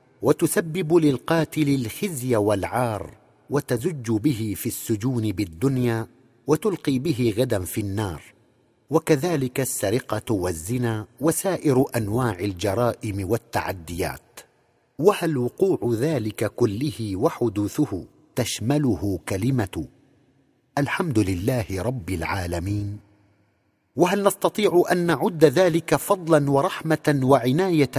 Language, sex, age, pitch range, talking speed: Arabic, male, 50-69, 115-155 Hz, 85 wpm